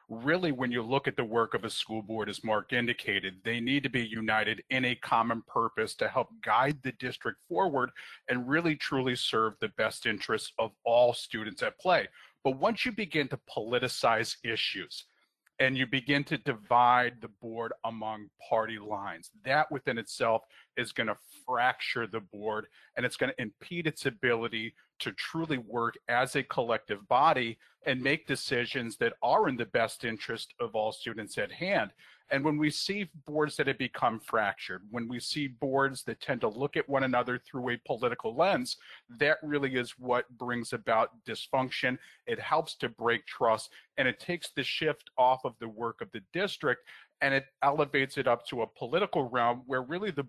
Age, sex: 40-59, male